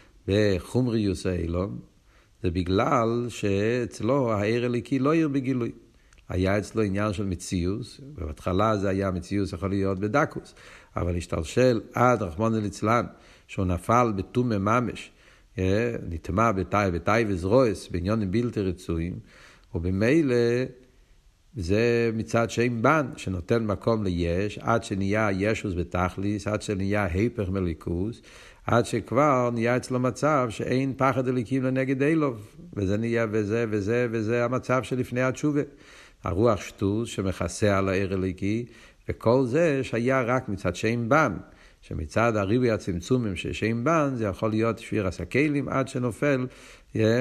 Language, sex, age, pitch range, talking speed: Hebrew, male, 60-79, 95-125 Hz, 125 wpm